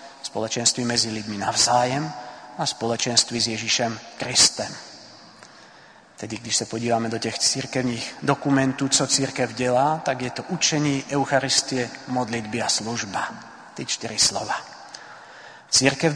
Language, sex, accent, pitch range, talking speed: Czech, male, native, 115-135 Hz, 120 wpm